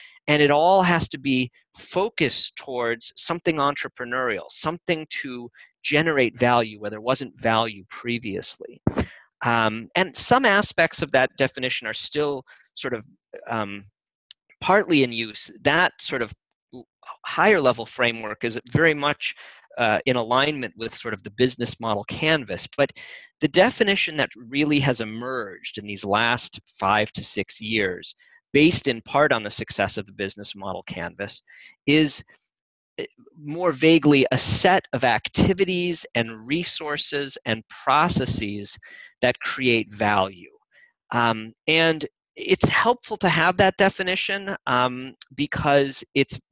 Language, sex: English, male